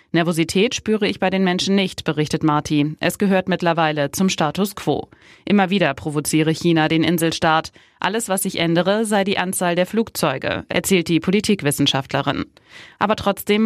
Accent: German